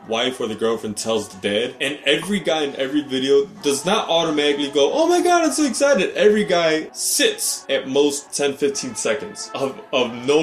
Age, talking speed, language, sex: 20-39, 195 wpm, English, male